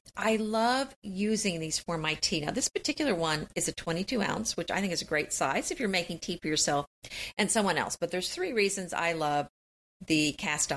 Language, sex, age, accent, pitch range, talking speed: English, female, 50-69, American, 165-235 Hz, 210 wpm